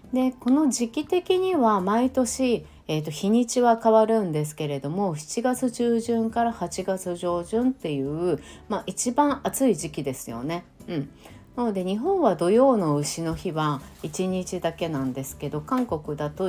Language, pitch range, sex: Japanese, 150-230 Hz, female